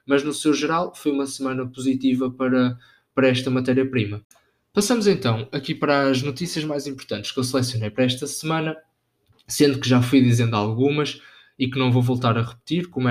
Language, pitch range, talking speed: Portuguese, 125-145 Hz, 185 wpm